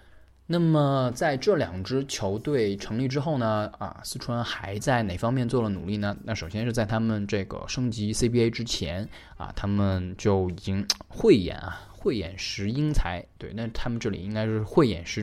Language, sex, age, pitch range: Chinese, male, 20-39, 95-115 Hz